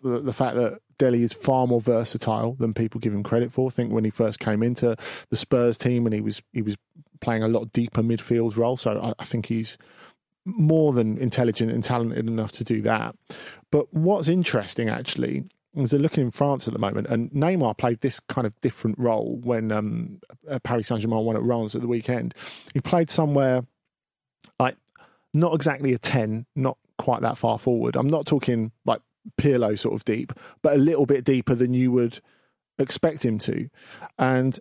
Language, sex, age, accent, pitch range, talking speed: English, male, 40-59, British, 115-135 Hz, 190 wpm